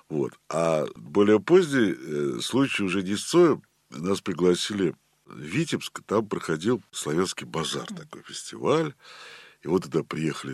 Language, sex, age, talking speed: Russian, male, 60-79, 125 wpm